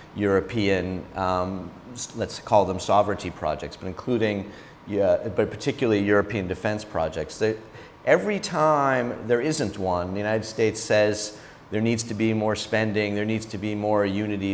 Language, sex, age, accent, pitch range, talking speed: English, male, 40-59, American, 100-120 Hz, 155 wpm